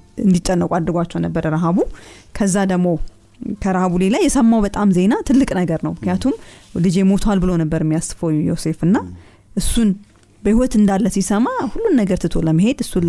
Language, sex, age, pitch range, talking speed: Amharic, female, 30-49, 165-200 Hz, 140 wpm